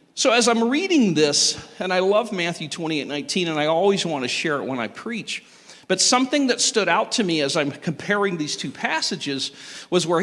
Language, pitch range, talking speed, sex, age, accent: English, 145-185 Hz, 210 wpm, male, 40-59, American